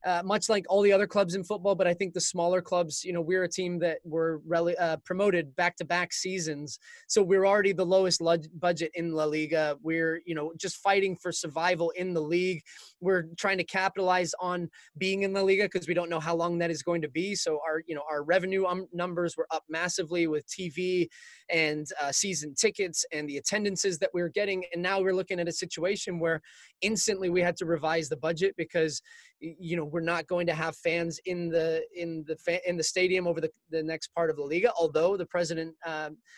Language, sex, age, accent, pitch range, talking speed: English, male, 20-39, American, 160-185 Hz, 220 wpm